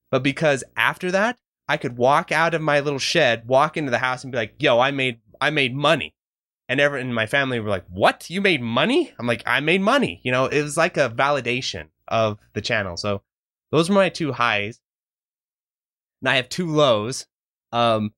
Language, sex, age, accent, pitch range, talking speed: English, male, 20-39, American, 115-155 Hz, 210 wpm